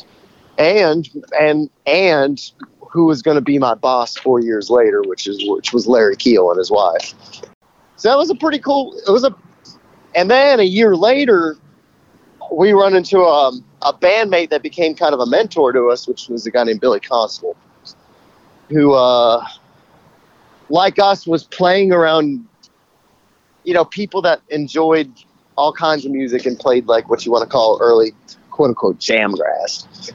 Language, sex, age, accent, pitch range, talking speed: English, male, 30-49, American, 130-195 Hz, 170 wpm